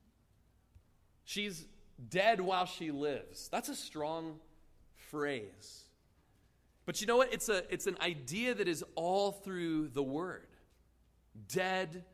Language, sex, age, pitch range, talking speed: English, male, 30-49, 125-195 Hz, 120 wpm